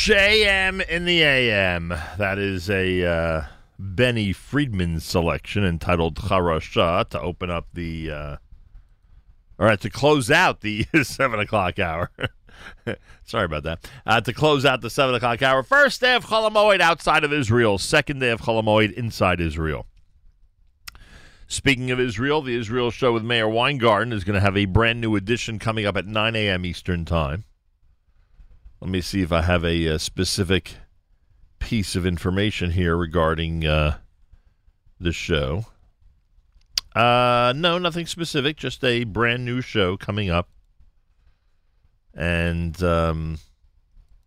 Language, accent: English, American